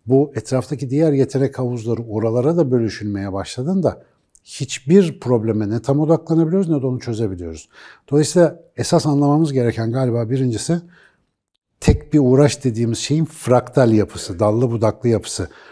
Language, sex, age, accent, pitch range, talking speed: Turkish, male, 60-79, native, 110-155 Hz, 130 wpm